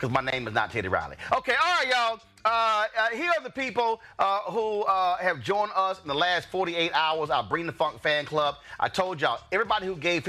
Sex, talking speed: male, 235 wpm